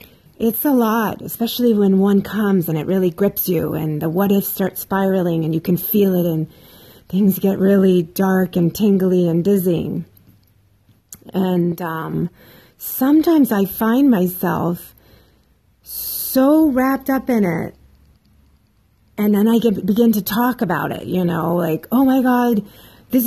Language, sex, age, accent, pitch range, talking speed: English, female, 30-49, American, 175-235 Hz, 145 wpm